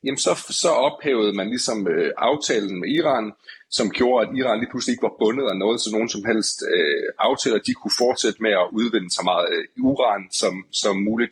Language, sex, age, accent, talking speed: Danish, male, 30-49, native, 215 wpm